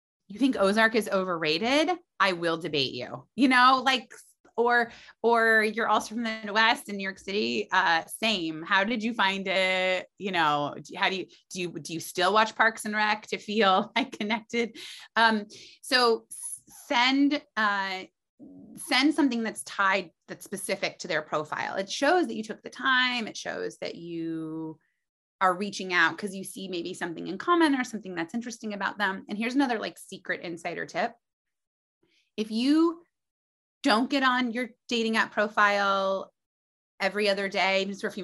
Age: 30-49